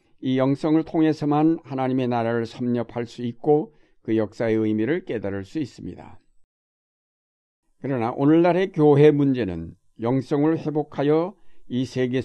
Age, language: 60-79, Korean